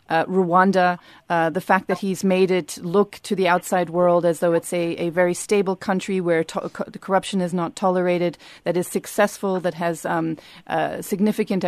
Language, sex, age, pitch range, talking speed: English, female, 30-49, 170-190 Hz, 180 wpm